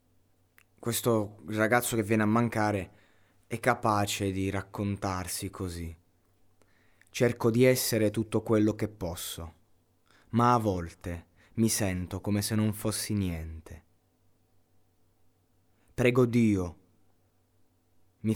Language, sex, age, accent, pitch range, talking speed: Italian, male, 20-39, native, 90-110 Hz, 100 wpm